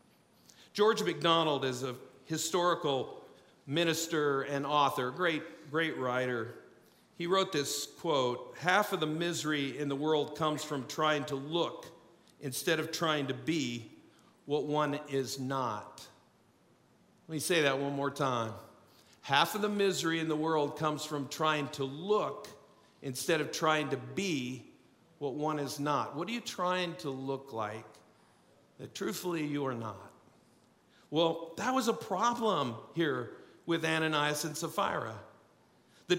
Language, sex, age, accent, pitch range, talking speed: English, male, 50-69, American, 140-185 Hz, 145 wpm